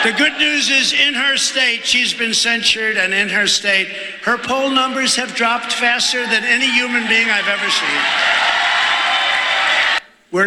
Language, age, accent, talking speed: English, 60-79, American, 160 wpm